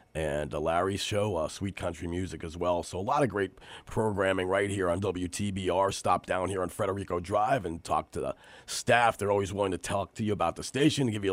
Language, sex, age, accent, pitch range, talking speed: English, male, 40-59, American, 100-170 Hz, 230 wpm